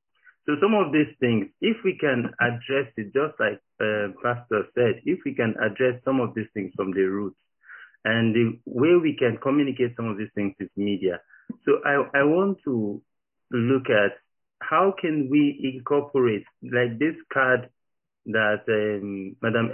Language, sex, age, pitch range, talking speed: English, male, 50-69, 120-155 Hz, 165 wpm